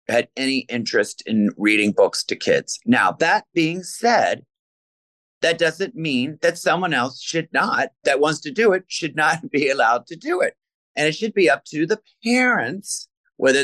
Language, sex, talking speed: English, male, 180 wpm